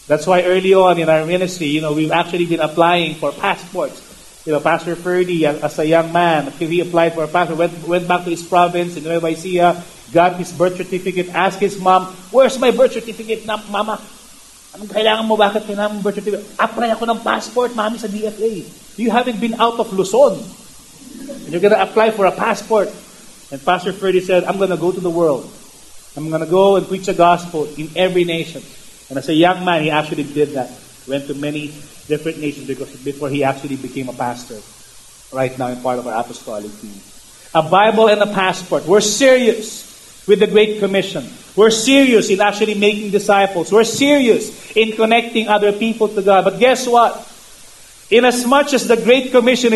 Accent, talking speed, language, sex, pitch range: Filipino, 185 wpm, English, male, 165-220 Hz